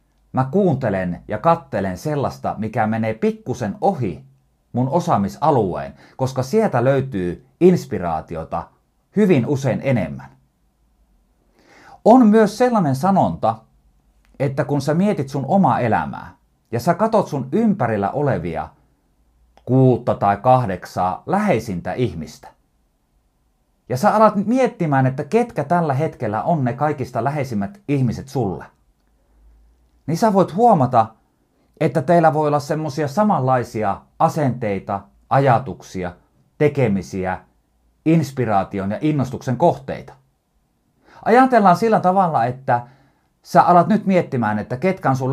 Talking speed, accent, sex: 110 wpm, native, male